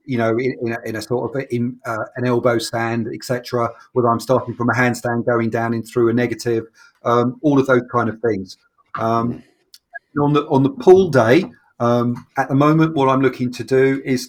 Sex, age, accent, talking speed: male, 40-59, British, 215 wpm